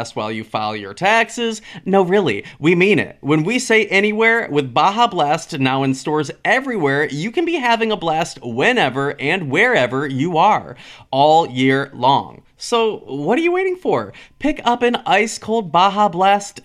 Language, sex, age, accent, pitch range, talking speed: English, male, 30-49, American, 140-215 Hz, 175 wpm